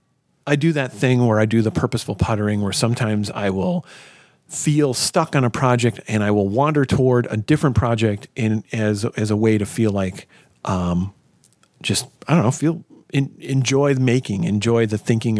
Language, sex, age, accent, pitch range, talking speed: English, male, 40-59, American, 105-140 Hz, 185 wpm